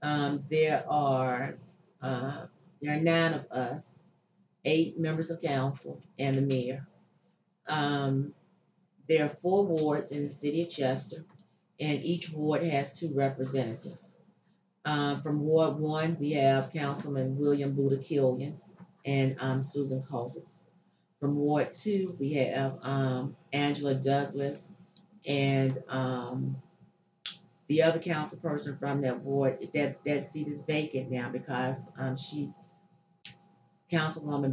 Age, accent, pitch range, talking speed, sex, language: 40-59, American, 135-160 Hz, 125 wpm, female, English